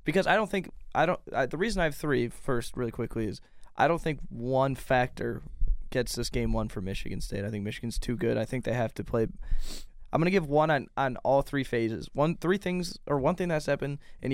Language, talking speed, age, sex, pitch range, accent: English, 255 wpm, 20-39, male, 120-135 Hz, American